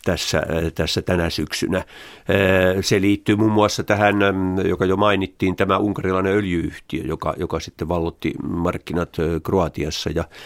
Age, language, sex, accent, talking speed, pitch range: 50-69, Finnish, male, native, 125 wpm, 85-100 Hz